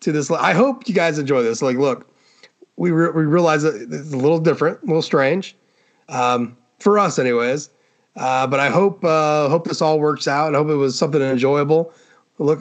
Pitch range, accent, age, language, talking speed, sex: 130-170 Hz, American, 30-49, English, 205 wpm, male